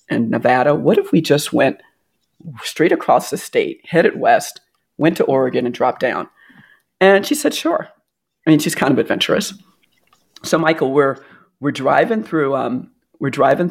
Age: 40-59